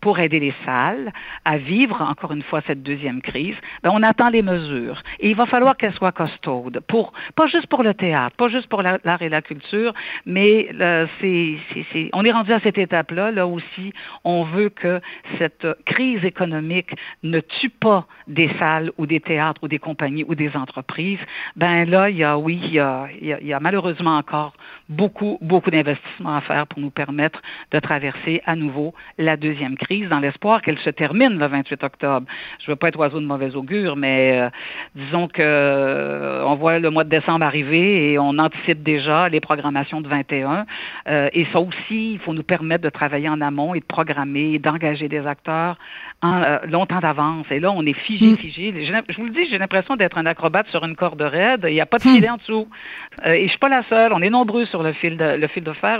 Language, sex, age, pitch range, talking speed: French, female, 50-69, 150-195 Hz, 220 wpm